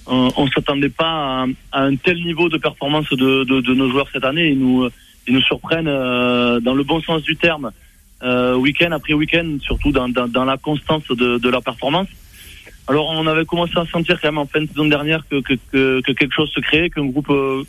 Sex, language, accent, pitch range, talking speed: male, French, French, 130-155 Hz, 230 wpm